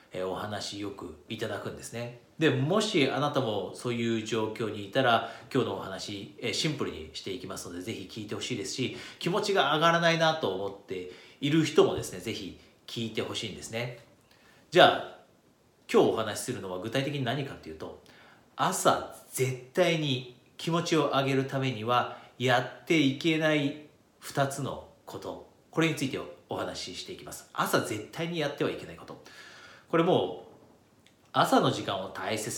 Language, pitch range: Japanese, 110-145 Hz